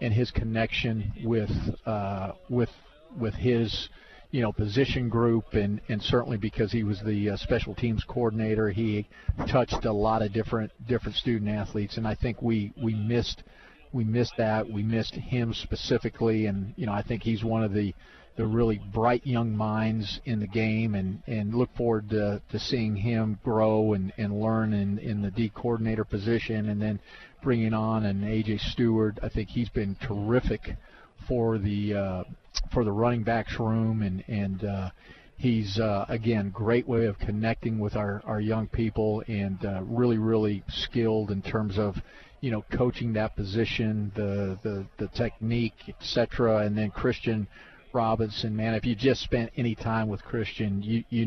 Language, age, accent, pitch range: English, 50-69, American, 105-115 Hz